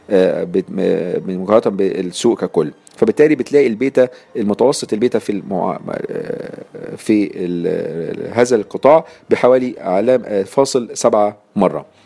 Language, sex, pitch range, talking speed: Arabic, male, 100-135 Hz, 95 wpm